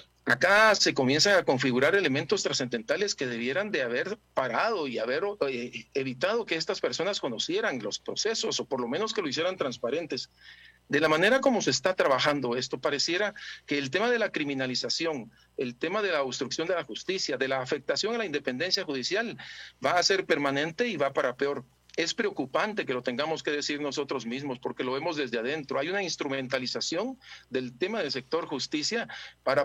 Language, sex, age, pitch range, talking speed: Spanish, male, 50-69, 135-200 Hz, 180 wpm